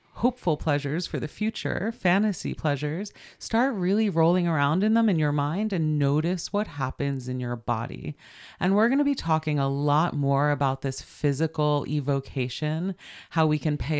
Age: 30-49